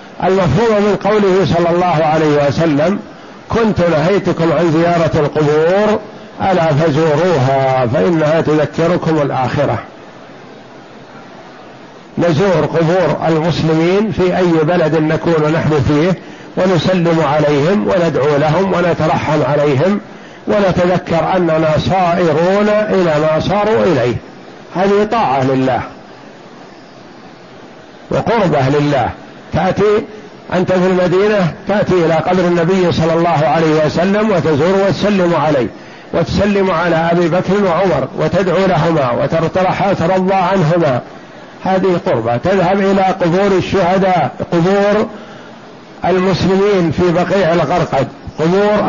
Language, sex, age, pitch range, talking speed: Arabic, male, 50-69, 160-195 Hz, 100 wpm